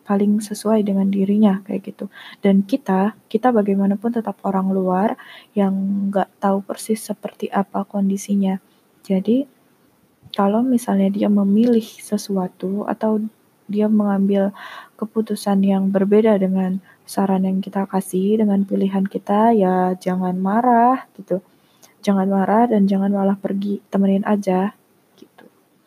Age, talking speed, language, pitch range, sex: 20-39, 125 wpm, Indonesian, 195-215 Hz, female